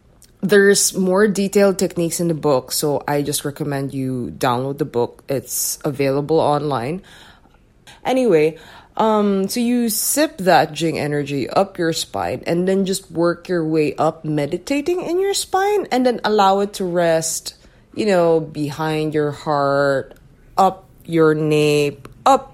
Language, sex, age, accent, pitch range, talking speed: English, female, 20-39, Filipino, 150-185 Hz, 145 wpm